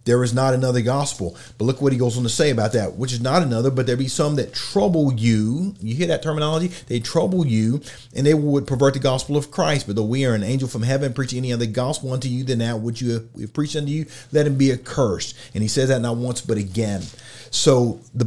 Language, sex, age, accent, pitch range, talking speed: English, male, 40-59, American, 120-150 Hz, 255 wpm